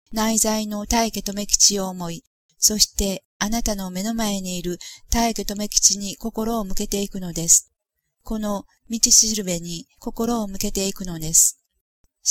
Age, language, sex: 40-59, Japanese, female